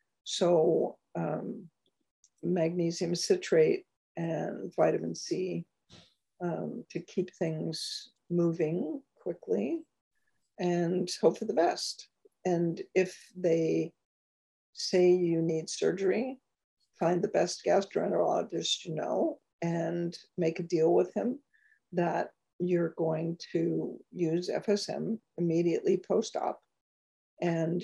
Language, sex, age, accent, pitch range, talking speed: English, female, 60-79, American, 165-190 Hz, 100 wpm